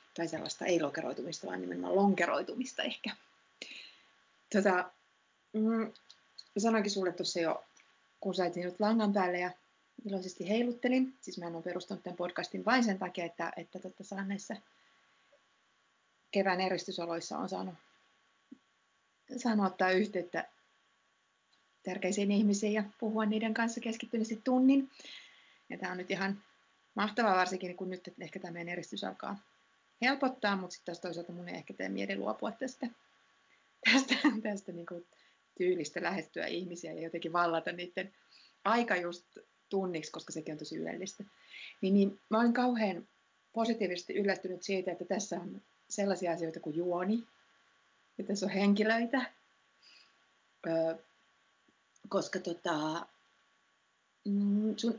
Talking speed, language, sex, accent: 125 wpm, Finnish, female, native